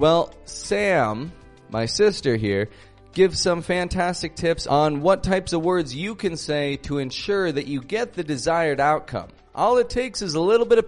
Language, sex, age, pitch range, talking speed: English, male, 30-49, 130-190 Hz, 180 wpm